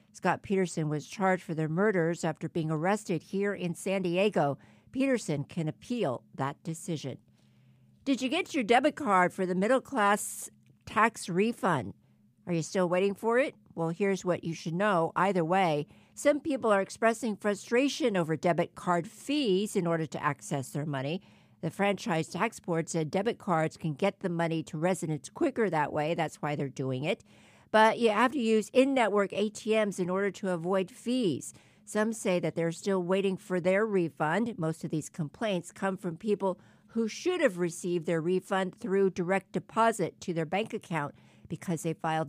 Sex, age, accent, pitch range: female, 50-69, American, 160-205 Hz